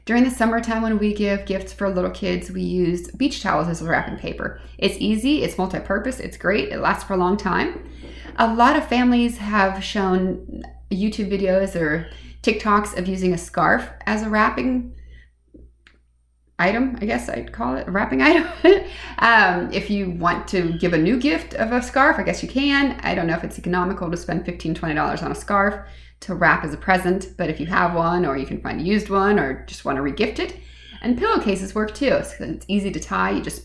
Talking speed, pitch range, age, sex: 215 wpm, 160-215 Hz, 30-49, female